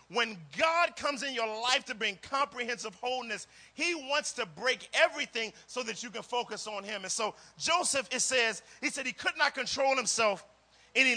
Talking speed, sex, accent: 190 wpm, male, American